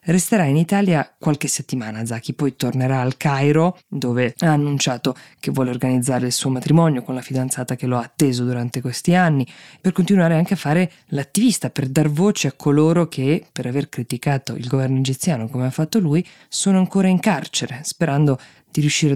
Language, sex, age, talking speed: Italian, female, 20-39, 180 wpm